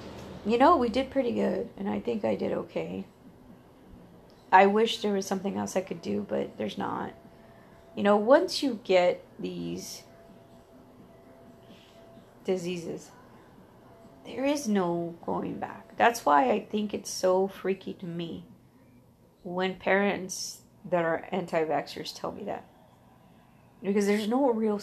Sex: female